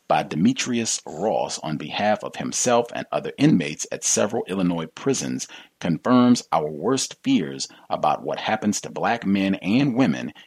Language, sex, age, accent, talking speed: English, male, 40-59, American, 150 wpm